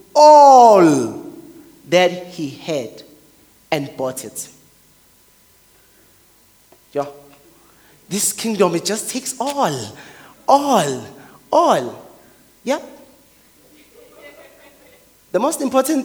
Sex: male